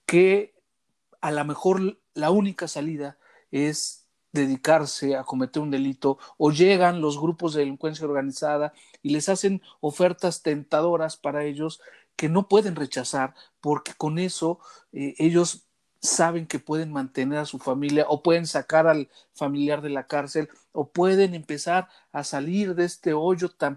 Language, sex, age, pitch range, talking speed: Spanish, male, 40-59, 140-170 Hz, 150 wpm